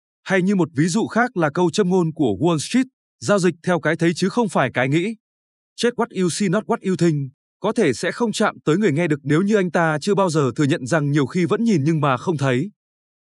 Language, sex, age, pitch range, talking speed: Vietnamese, male, 20-39, 145-200 Hz, 260 wpm